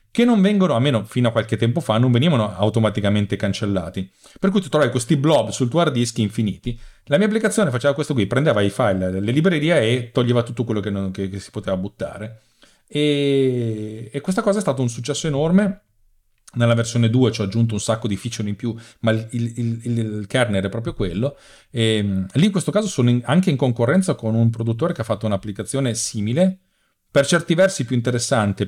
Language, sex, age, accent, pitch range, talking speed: Italian, male, 40-59, native, 105-140 Hz, 205 wpm